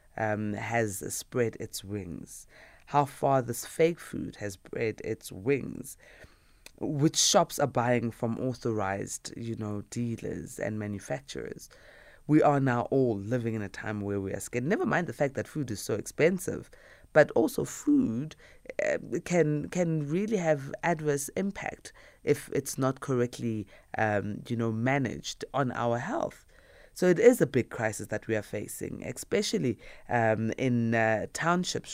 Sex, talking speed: female, 150 wpm